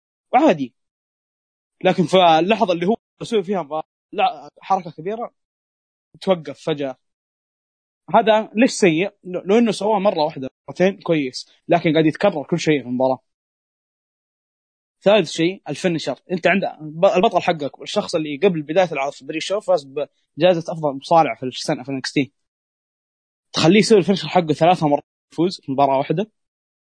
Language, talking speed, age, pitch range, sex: Arabic, 135 wpm, 20-39, 135-180 Hz, male